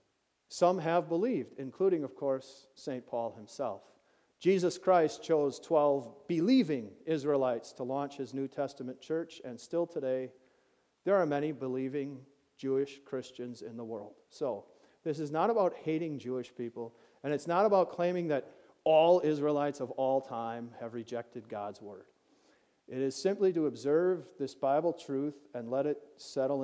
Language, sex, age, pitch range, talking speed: English, male, 40-59, 130-170 Hz, 155 wpm